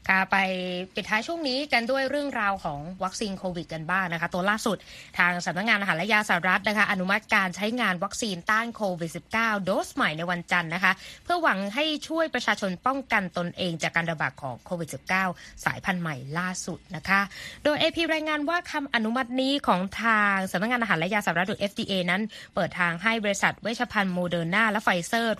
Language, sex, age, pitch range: Thai, female, 20-39, 180-240 Hz